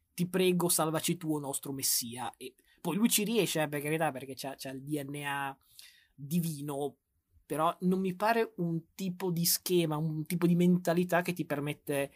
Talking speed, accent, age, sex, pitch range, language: 170 wpm, native, 20-39, male, 140-170 Hz, Italian